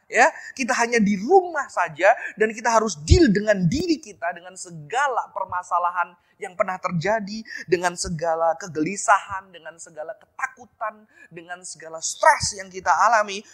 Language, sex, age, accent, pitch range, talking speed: Indonesian, male, 20-39, native, 175-255 Hz, 135 wpm